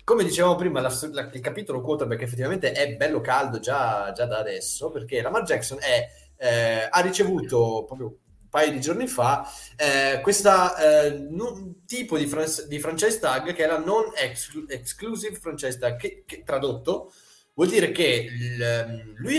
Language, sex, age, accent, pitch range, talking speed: Italian, male, 20-39, native, 120-180 Hz, 160 wpm